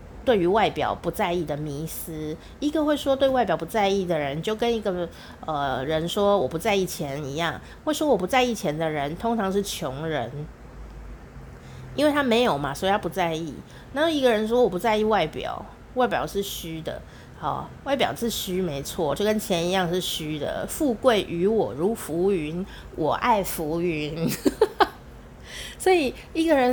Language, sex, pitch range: Chinese, female, 170-245 Hz